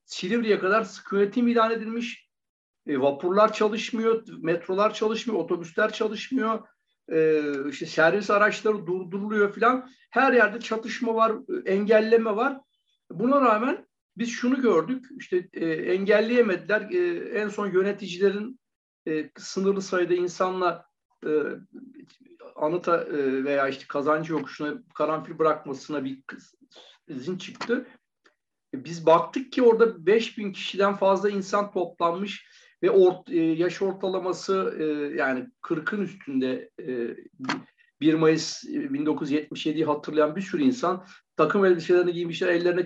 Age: 60-79